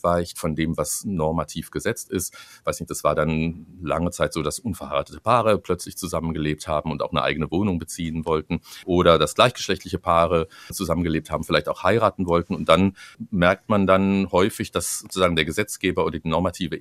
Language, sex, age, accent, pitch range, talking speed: German, male, 50-69, German, 80-100 Hz, 180 wpm